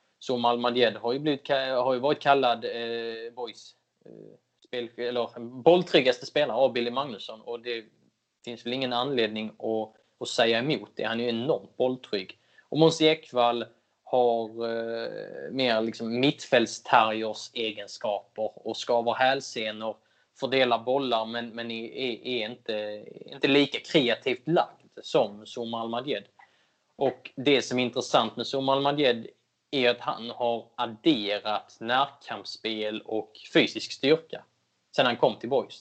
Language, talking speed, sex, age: Swedish, 140 wpm, male, 20-39